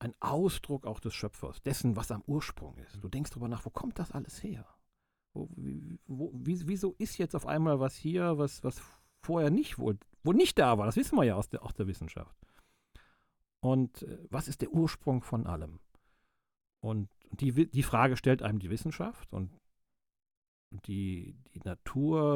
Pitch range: 105-145 Hz